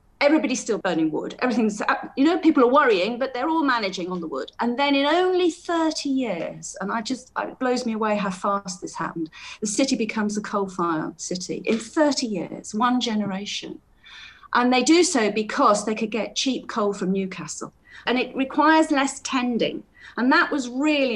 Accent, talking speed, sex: British, 185 wpm, female